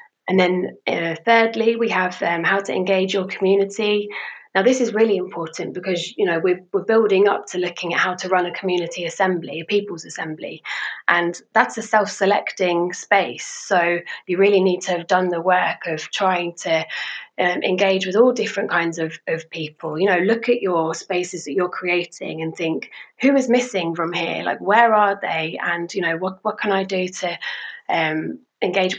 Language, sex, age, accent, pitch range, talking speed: English, female, 20-39, British, 180-225 Hz, 190 wpm